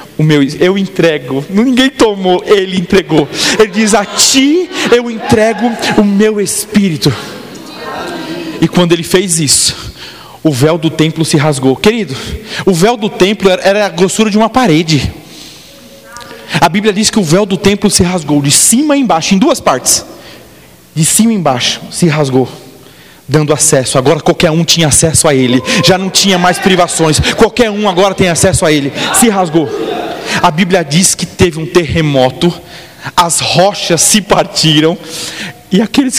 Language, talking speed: Portuguese, 160 wpm